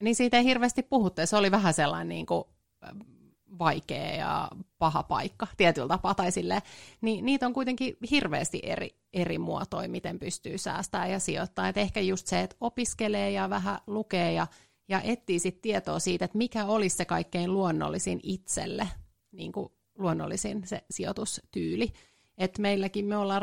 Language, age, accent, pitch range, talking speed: Finnish, 30-49, native, 170-220 Hz, 150 wpm